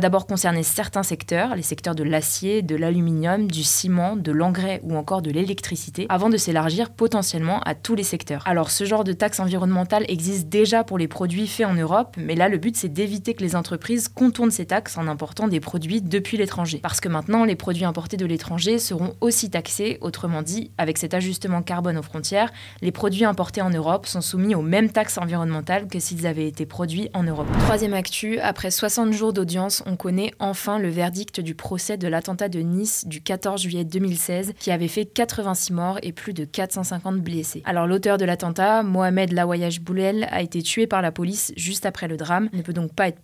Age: 20-39